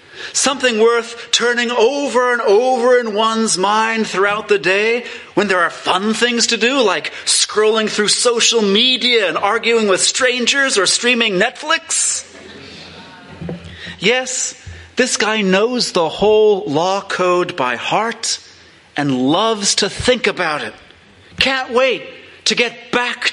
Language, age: English, 30-49